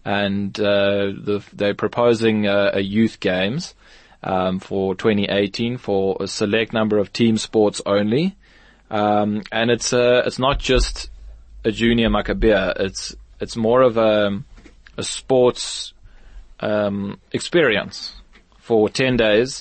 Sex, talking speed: male, 130 wpm